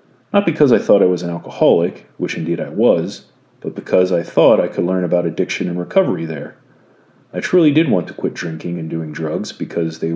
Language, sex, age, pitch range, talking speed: English, male, 40-59, 85-120 Hz, 215 wpm